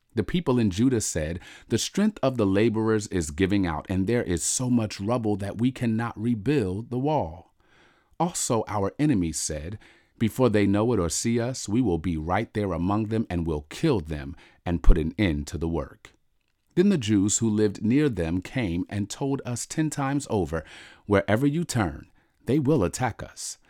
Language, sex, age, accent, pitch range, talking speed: English, male, 40-59, American, 90-125 Hz, 190 wpm